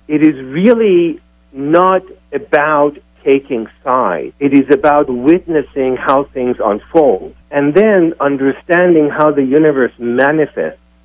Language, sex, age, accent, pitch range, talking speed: English, male, 50-69, American, 115-155 Hz, 115 wpm